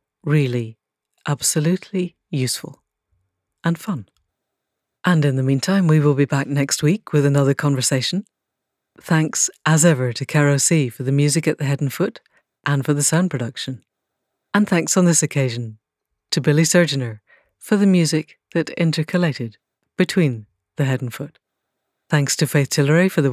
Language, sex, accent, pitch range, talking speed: English, female, British, 130-165 Hz, 155 wpm